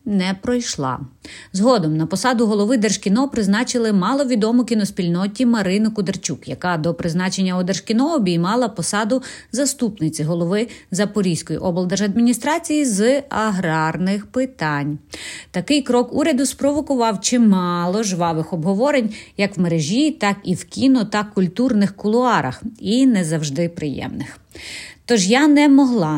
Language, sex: Ukrainian, female